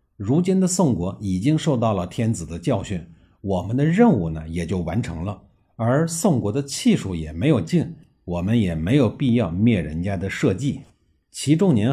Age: 50-69